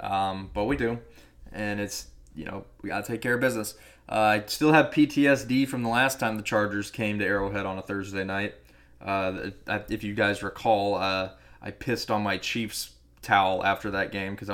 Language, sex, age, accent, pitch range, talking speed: English, male, 20-39, American, 100-130 Hz, 200 wpm